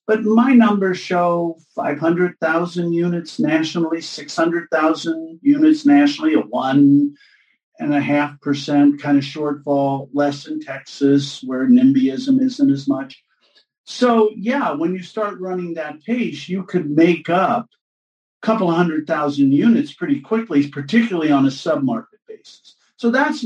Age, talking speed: 50-69, 140 wpm